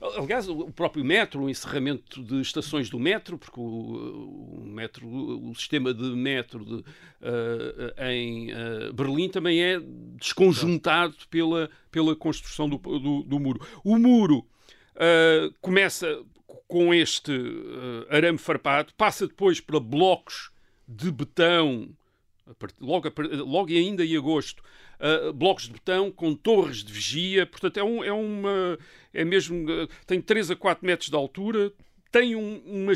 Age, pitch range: 50-69, 145-185 Hz